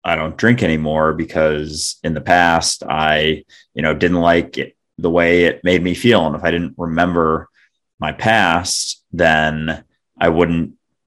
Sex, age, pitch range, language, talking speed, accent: male, 30-49, 80-100 Hz, English, 165 wpm, American